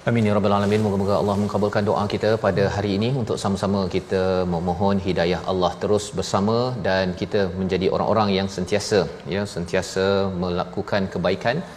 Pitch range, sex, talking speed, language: 95-110 Hz, male, 155 wpm, Malayalam